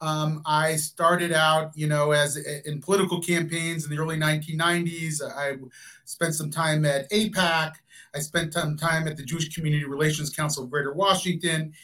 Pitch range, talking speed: 155-200 Hz, 165 wpm